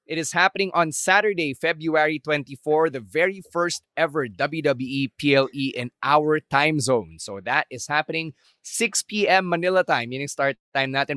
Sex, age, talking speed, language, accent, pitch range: male, 20-39, 155 wpm, English, Filipino, 130-170 Hz